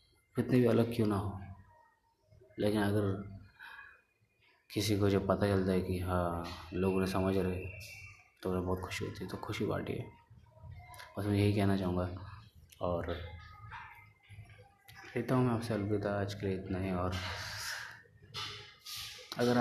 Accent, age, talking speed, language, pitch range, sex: native, 20-39, 140 wpm, Hindi, 95-105 Hz, male